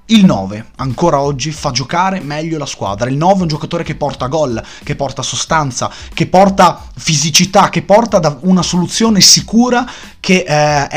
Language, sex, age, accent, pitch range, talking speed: Italian, male, 30-49, native, 125-170 Hz, 165 wpm